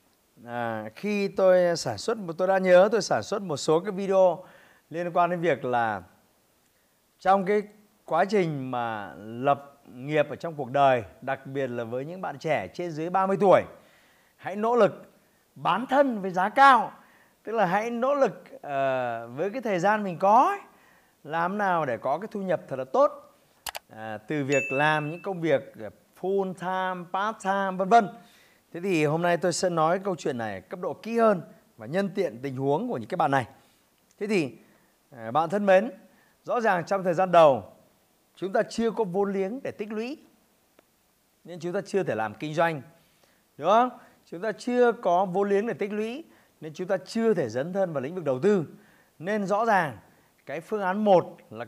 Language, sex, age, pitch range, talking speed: Vietnamese, male, 30-49, 155-210 Hz, 195 wpm